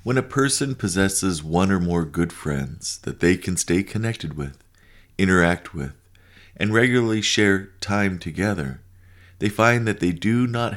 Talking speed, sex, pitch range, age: 155 wpm, male, 85-100 Hz, 50-69